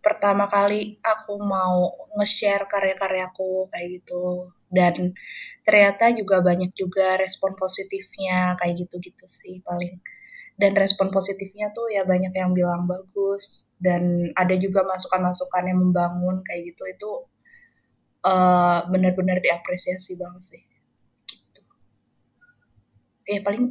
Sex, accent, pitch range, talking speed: female, native, 185-220 Hz, 115 wpm